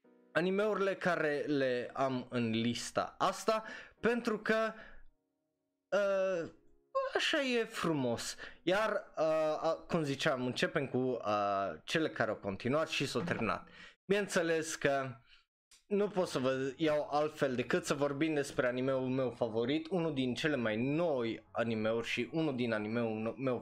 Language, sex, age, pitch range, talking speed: Romanian, male, 20-39, 120-170 Hz, 135 wpm